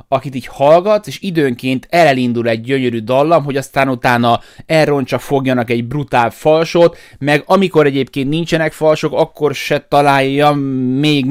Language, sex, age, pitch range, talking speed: Hungarian, male, 30-49, 115-140 Hz, 140 wpm